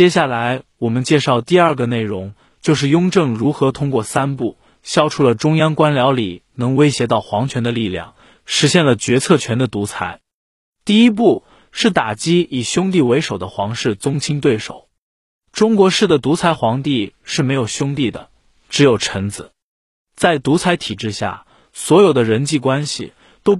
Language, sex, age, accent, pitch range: Chinese, male, 20-39, native, 115-155 Hz